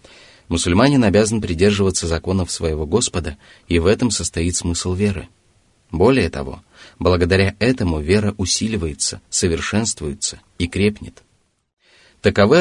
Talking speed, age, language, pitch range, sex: 105 wpm, 30-49, Russian, 85-110 Hz, male